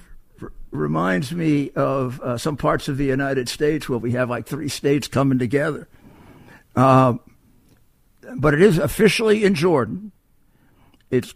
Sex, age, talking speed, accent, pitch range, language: male, 60-79, 135 wpm, American, 125-165 Hz, English